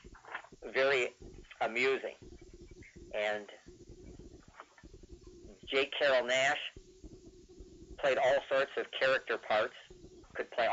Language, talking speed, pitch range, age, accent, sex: English, 80 wpm, 115-135 Hz, 50-69, American, male